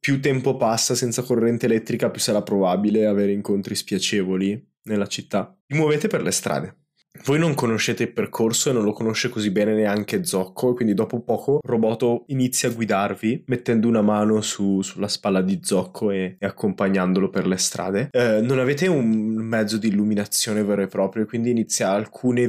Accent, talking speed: native, 175 wpm